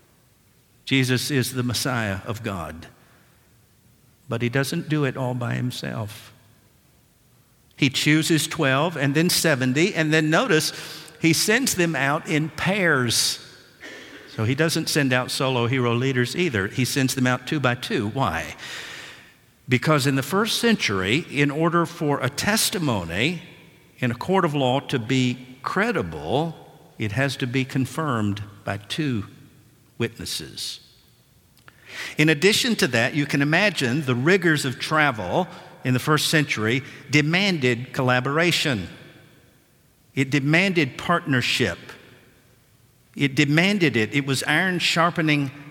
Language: English